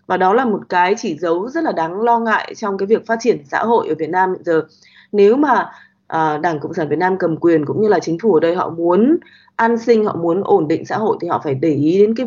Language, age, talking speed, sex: Vietnamese, 20-39, 285 wpm, female